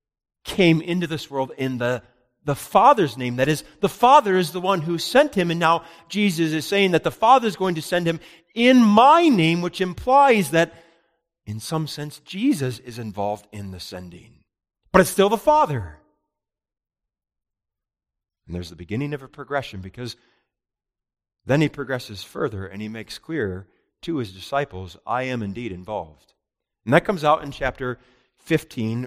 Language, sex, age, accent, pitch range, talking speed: English, male, 40-59, American, 110-180 Hz, 170 wpm